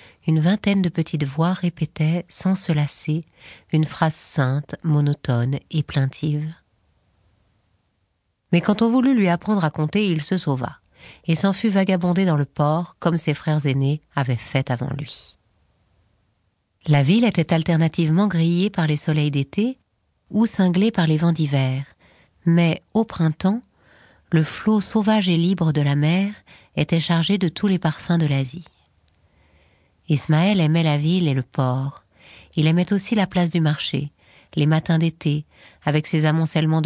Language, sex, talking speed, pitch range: French, female, 155 wpm, 145-170 Hz